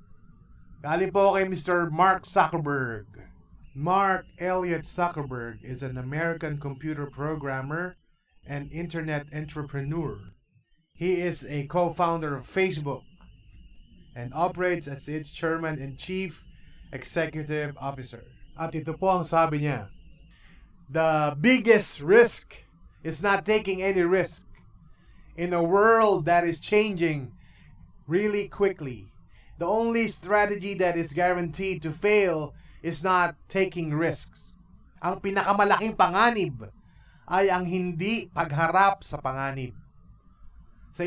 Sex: male